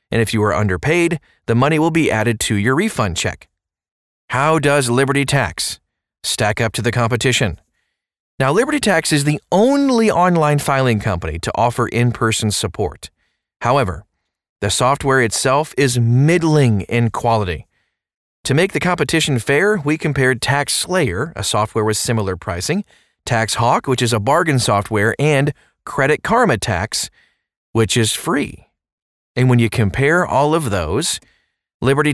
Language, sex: English, male